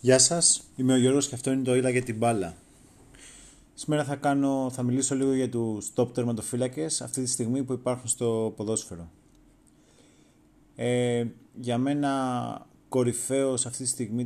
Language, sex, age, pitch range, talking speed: Greek, male, 30-49, 115-135 Hz, 145 wpm